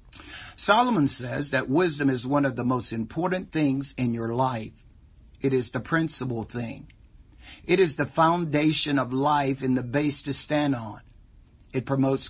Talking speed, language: 160 wpm, English